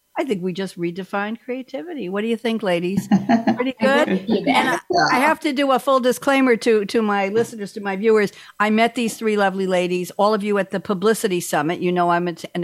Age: 60-79